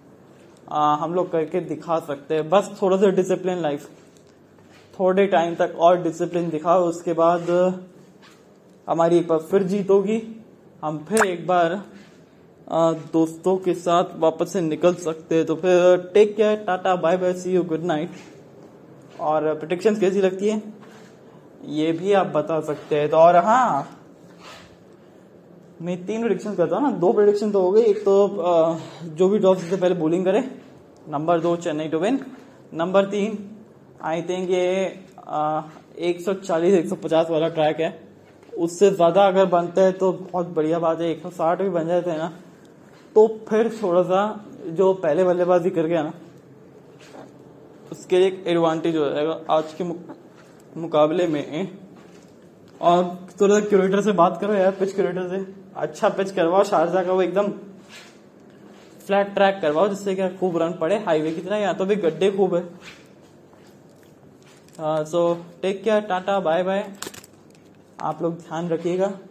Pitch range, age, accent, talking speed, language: 165-195 Hz, 20-39, Indian, 110 wpm, English